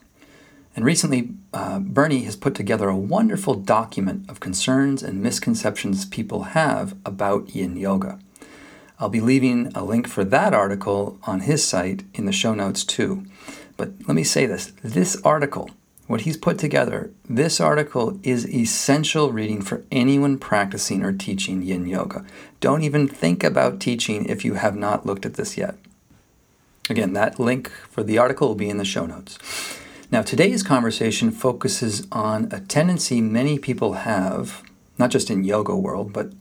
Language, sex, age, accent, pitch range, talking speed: English, male, 40-59, American, 100-150 Hz, 165 wpm